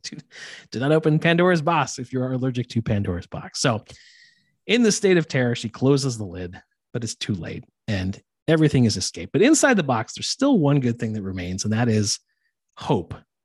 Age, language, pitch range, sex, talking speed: 30-49, English, 105-160 Hz, male, 200 wpm